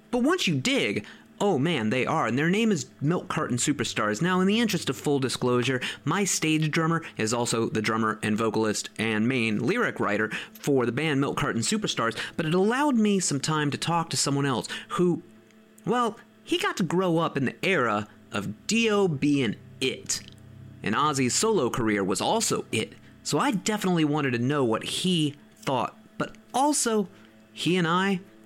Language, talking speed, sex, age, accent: English, 185 wpm, male, 30-49, American